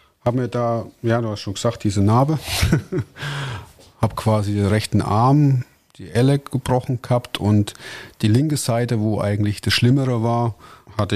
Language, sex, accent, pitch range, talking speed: German, male, German, 105-125 Hz, 155 wpm